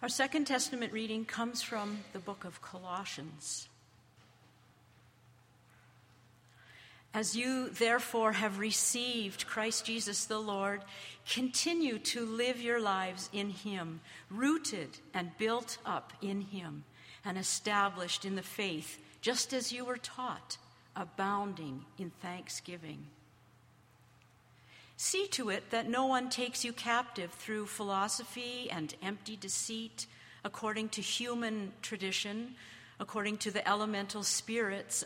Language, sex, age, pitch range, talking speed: English, female, 50-69, 160-230 Hz, 115 wpm